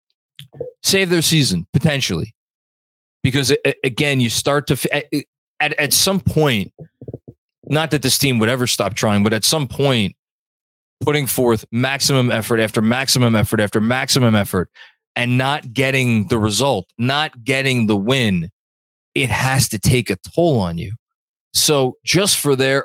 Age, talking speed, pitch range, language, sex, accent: 20-39, 145 wpm, 105-145 Hz, English, male, American